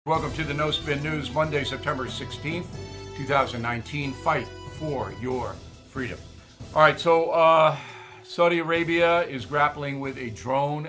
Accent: American